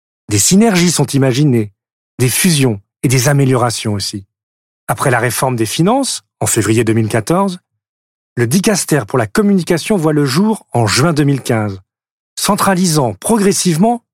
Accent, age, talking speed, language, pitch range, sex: French, 40-59, 130 wpm, French, 115-165 Hz, male